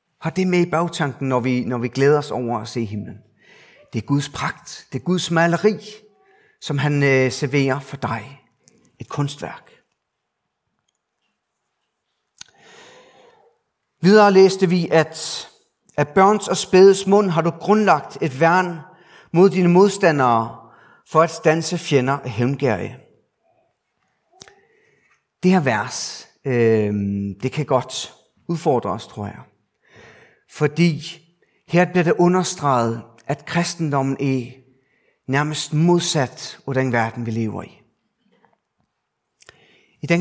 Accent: native